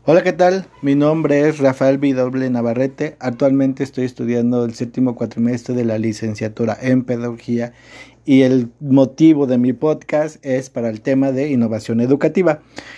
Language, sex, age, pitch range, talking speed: Spanish, male, 50-69, 120-145 Hz, 155 wpm